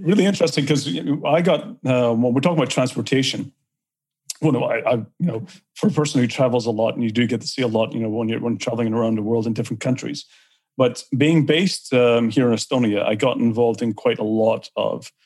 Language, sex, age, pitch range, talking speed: English, male, 40-59, 115-140 Hz, 235 wpm